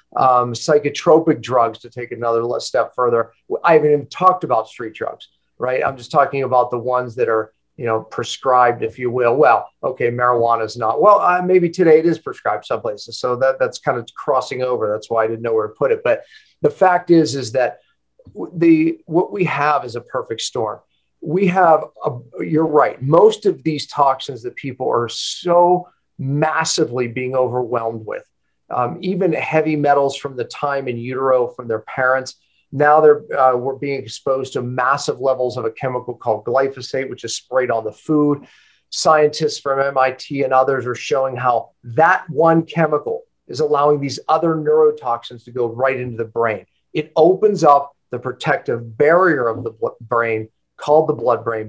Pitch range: 120-155 Hz